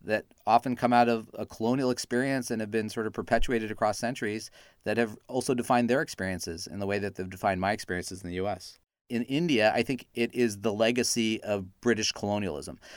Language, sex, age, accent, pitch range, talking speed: English, male, 40-59, American, 110-130 Hz, 205 wpm